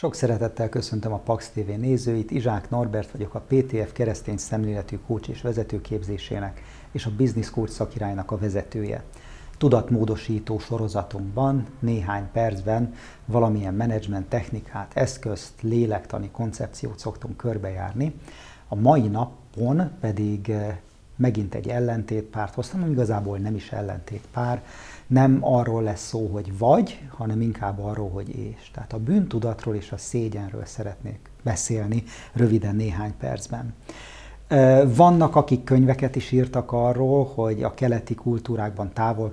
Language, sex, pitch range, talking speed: Hungarian, male, 105-125 Hz, 120 wpm